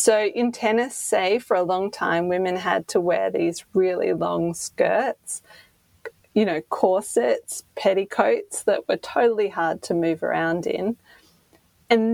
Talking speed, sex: 145 wpm, female